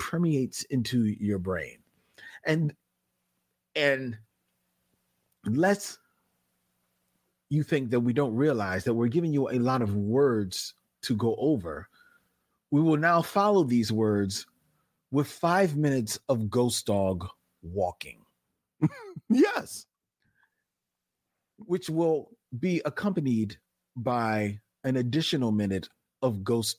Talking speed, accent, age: 110 wpm, American, 40-59